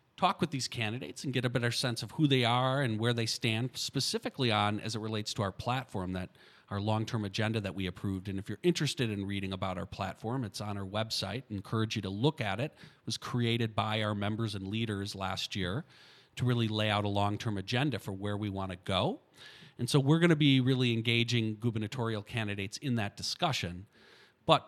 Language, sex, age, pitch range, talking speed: English, male, 40-59, 105-135 Hz, 215 wpm